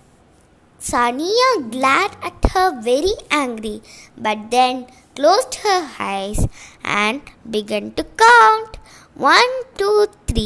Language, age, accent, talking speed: Tamil, 20-39, native, 100 wpm